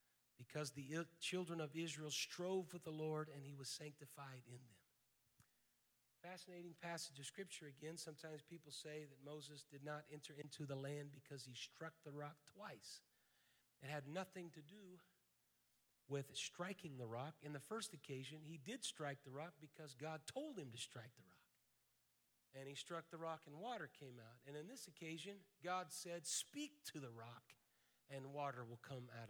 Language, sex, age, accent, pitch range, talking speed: English, male, 40-59, American, 145-190 Hz, 180 wpm